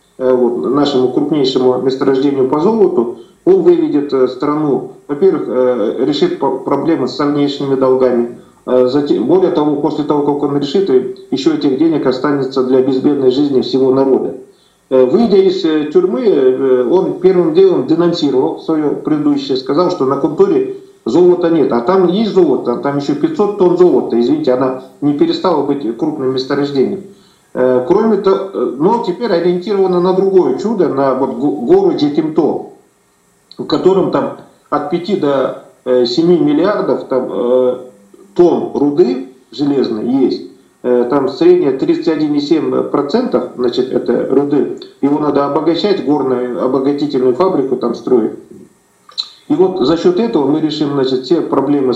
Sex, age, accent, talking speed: male, 40-59, native, 120 wpm